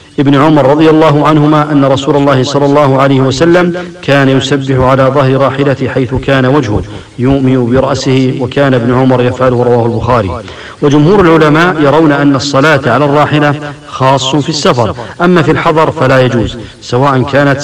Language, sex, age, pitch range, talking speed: English, male, 50-69, 130-150 Hz, 155 wpm